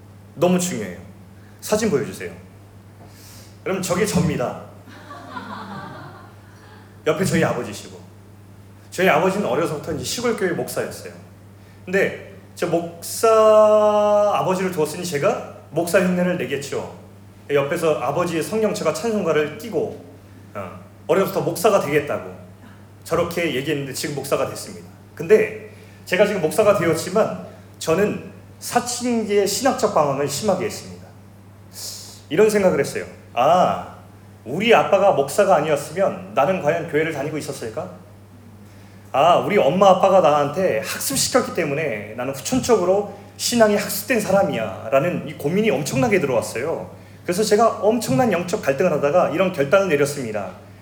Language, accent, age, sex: Korean, native, 30-49, male